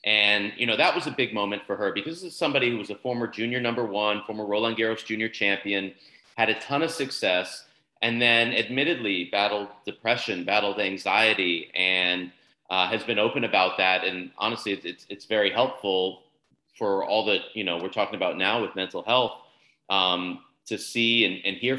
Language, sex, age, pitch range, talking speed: English, male, 30-49, 95-120 Hz, 195 wpm